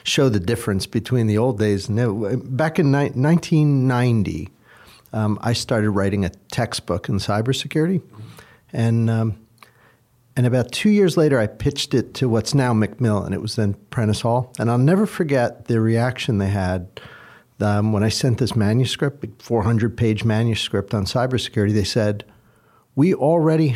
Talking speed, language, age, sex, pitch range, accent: 155 wpm, English, 50-69, male, 110-140 Hz, American